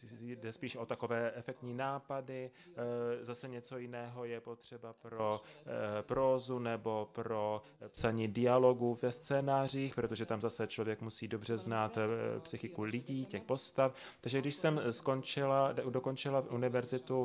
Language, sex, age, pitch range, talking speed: Czech, male, 30-49, 115-135 Hz, 125 wpm